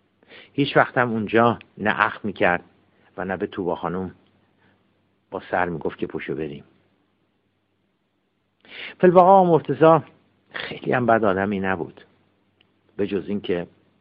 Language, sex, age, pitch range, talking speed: Persian, male, 50-69, 90-105 Hz, 125 wpm